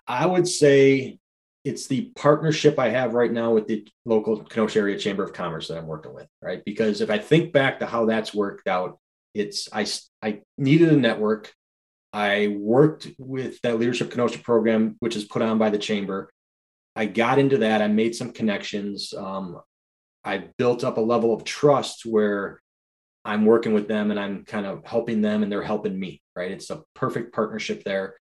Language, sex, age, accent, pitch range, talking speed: English, male, 20-39, American, 105-130 Hz, 190 wpm